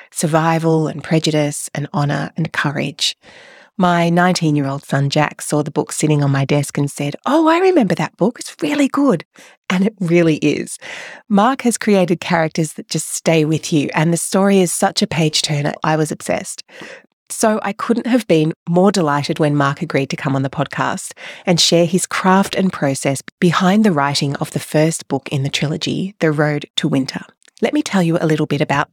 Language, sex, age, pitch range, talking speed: English, female, 30-49, 145-185 Hz, 195 wpm